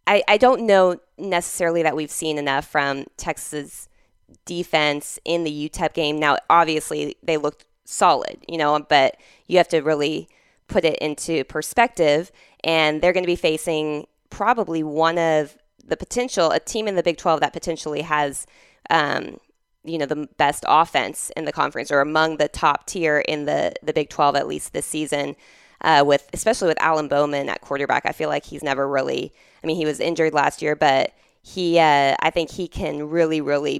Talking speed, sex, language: 185 wpm, female, English